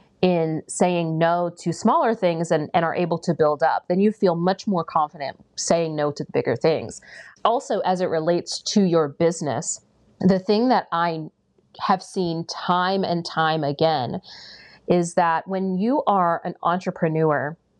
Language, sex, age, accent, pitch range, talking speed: English, female, 30-49, American, 165-190 Hz, 165 wpm